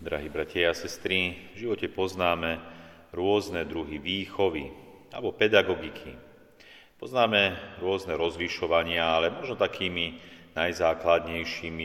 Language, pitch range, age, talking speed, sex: Slovak, 80-95 Hz, 40-59, 95 wpm, male